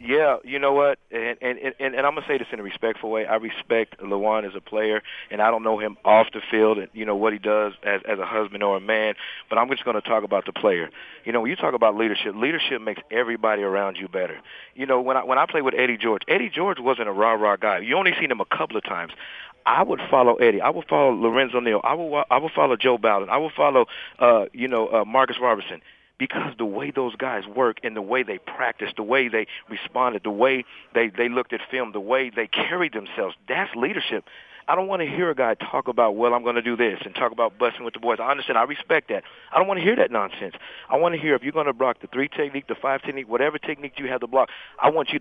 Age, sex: 40-59, male